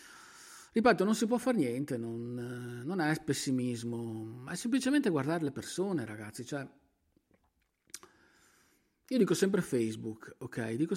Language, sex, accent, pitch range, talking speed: Italian, male, native, 120-165 Hz, 125 wpm